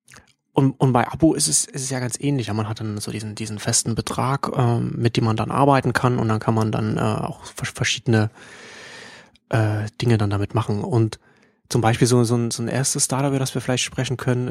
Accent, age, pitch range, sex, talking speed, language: German, 30-49, 120-145 Hz, male, 230 wpm, German